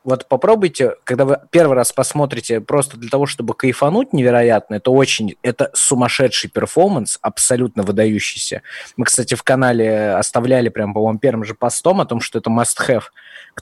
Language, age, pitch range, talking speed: Russian, 20-39, 115-145 Hz, 160 wpm